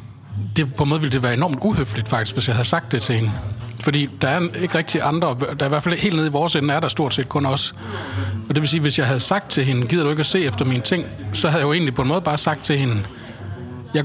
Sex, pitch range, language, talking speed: male, 120-155 Hz, Danish, 295 wpm